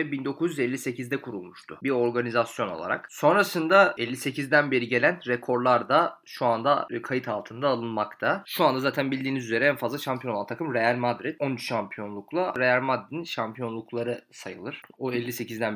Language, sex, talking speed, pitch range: Turkish, male, 135 wpm, 115-160 Hz